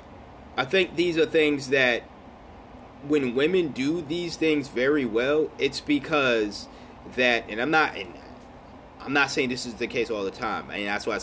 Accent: American